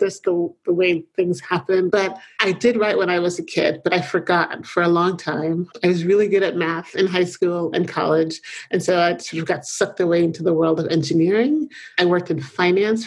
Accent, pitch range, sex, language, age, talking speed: American, 170-205 Hz, male, English, 30-49, 230 wpm